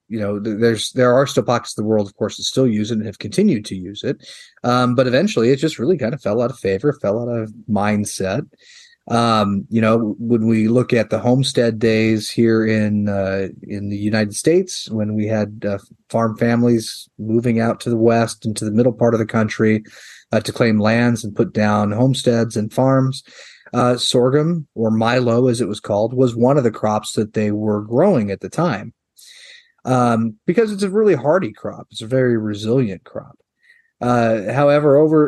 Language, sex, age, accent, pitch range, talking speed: English, male, 30-49, American, 110-130 Hz, 200 wpm